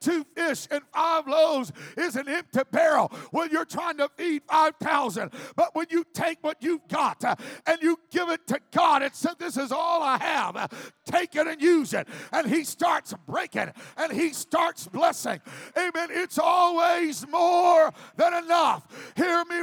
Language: English